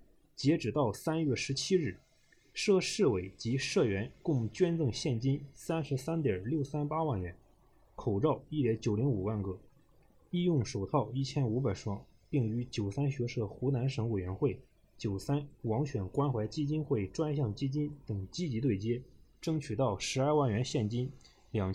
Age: 20-39